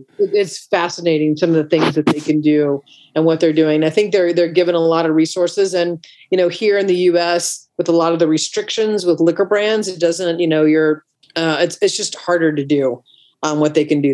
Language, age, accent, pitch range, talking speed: English, 40-59, American, 155-185 Hz, 240 wpm